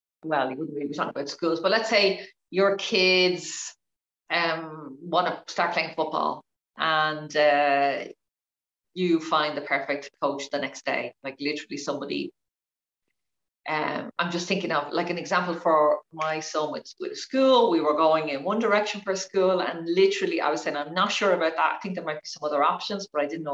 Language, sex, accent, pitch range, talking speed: English, female, Irish, 155-195 Hz, 190 wpm